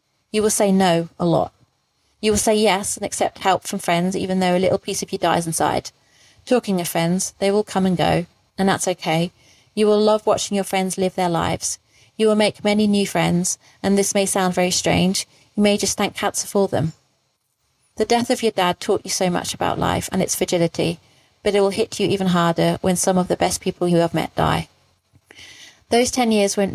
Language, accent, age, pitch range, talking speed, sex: English, British, 30-49, 170-205 Hz, 220 wpm, female